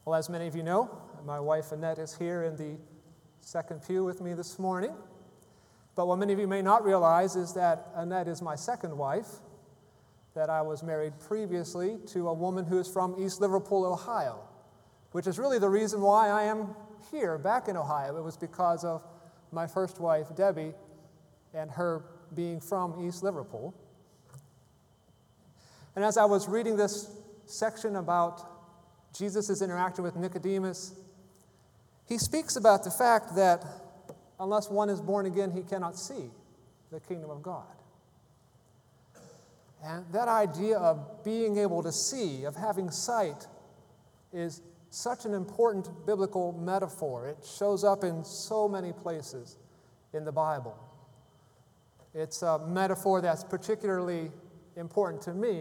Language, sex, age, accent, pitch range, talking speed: English, male, 30-49, American, 160-200 Hz, 150 wpm